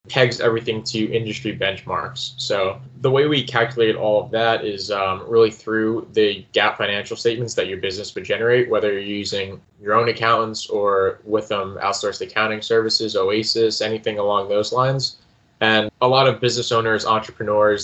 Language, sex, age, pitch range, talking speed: English, male, 10-29, 105-125 Hz, 170 wpm